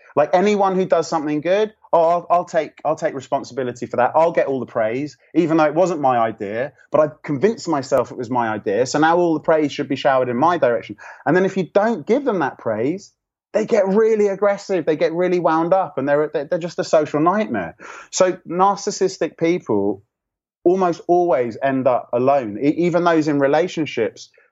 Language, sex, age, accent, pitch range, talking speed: English, male, 30-49, British, 135-180 Hz, 215 wpm